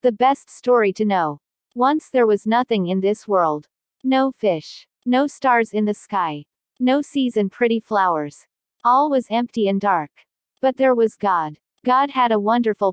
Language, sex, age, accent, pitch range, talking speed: English, female, 40-59, American, 190-250 Hz, 170 wpm